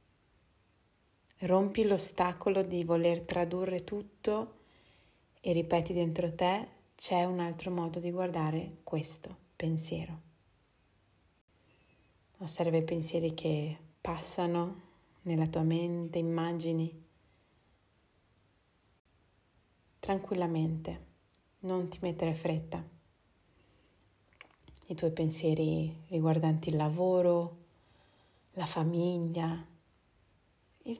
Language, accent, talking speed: Italian, native, 80 wpm